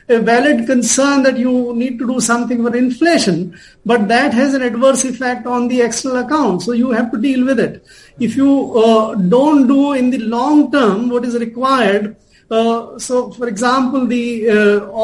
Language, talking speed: English, 185 wpm